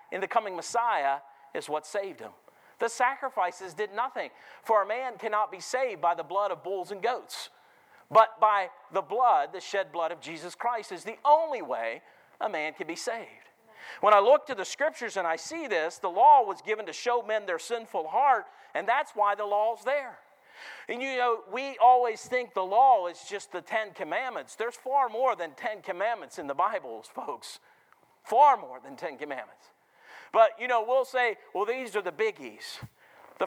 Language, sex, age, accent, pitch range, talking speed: English, male, 50-69, American, 195-260 Hz, 195 wpm